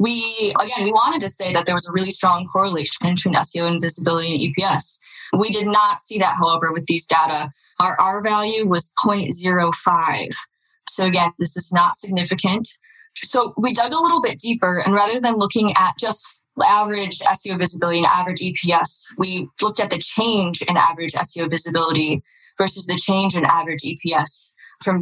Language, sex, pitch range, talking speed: English, female, 170-210 Hz, 175 wpm